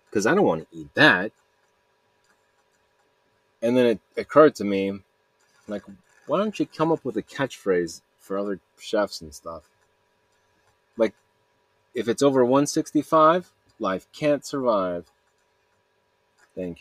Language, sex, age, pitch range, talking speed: English, male, 30-49, 85-125 Hz, 130 wpm